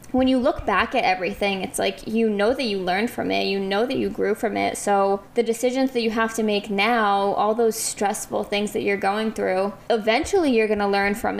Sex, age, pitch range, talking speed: female, 20-39, 200-240 Hz, 235 wpm